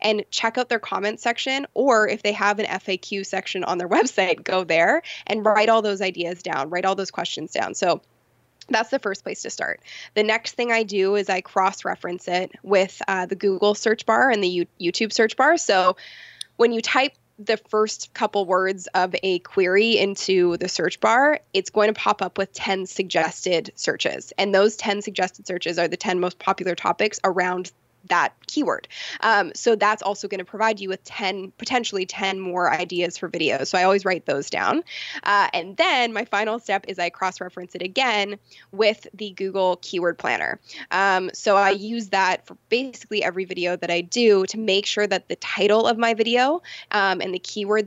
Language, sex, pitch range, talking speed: English, female, 185-215 Hz, 195 wpm